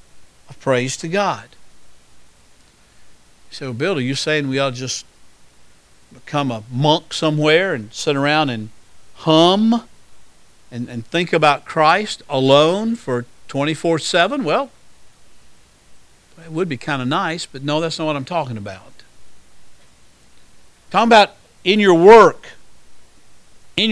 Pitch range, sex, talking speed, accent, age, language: 140-210 Hz, male, 130 wpm, American, 50-69, English